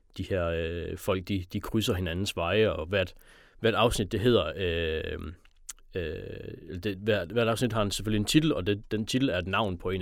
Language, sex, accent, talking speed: Danish, male, native, 210 wpm